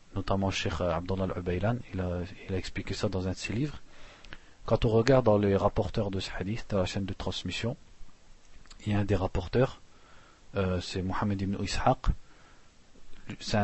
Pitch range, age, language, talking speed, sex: 95-115 Hz, 40-59, French, 175 wpm, male